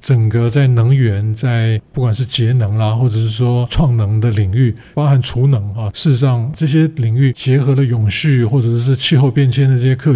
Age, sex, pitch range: 50-69, male, 115-140 Hz